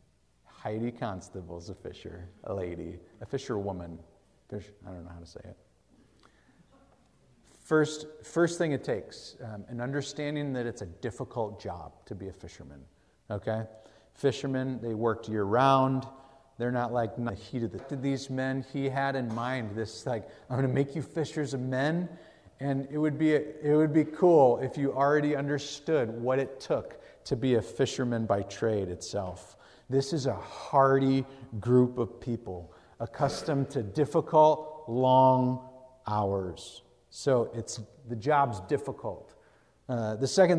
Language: English